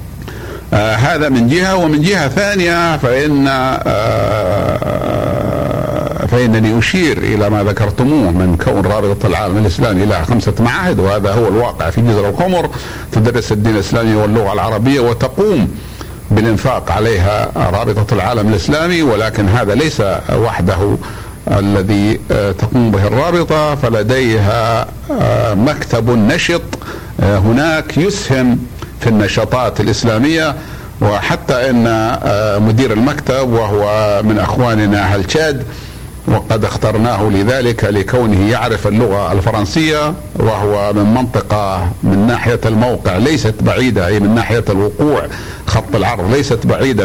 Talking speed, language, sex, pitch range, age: 105 wpm, Arabic, male, 105-130 Hz, 60-79